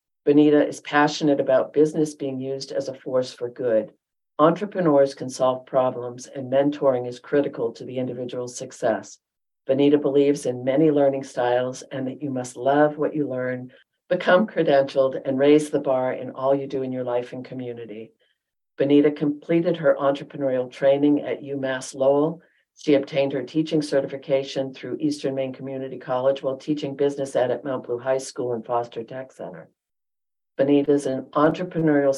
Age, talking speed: 50-69, 160 wpm